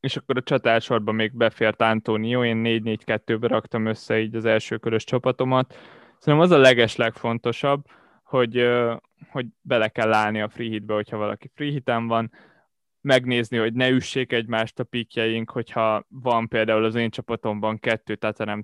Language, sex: Hungarian, male